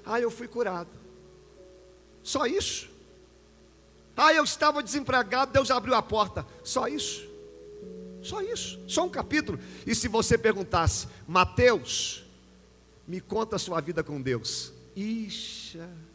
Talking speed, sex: 125 wpm, male